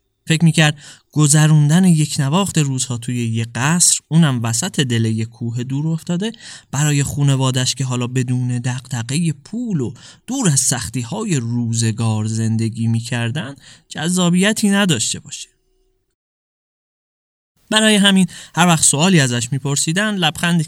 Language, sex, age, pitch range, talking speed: Persian, male, 20-39, 120-170 Hz, 120 wpm